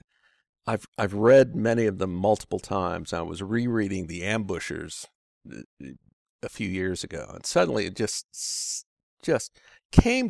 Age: 50-69